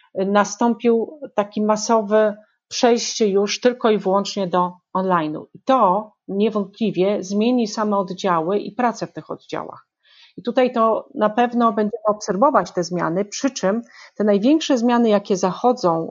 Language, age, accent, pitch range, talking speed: Polish, 40-59, native, 180-220 Hz, 140 wpm